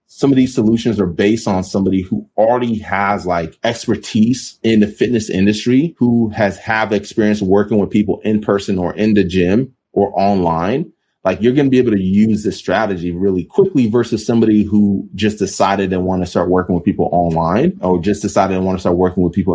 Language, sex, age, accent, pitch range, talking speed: English, male, 30-49, American, 90-110 Hz, 205 wpm